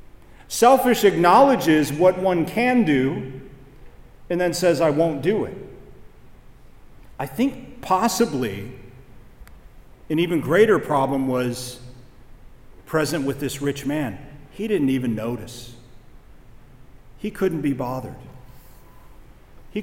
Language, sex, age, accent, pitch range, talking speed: English, male, 40-59, American, 130-185 Hz, 105 wpm